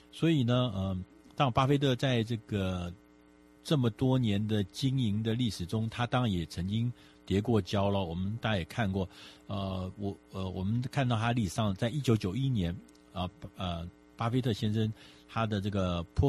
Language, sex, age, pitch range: Chinese, male, 50-69, 80-115 Hz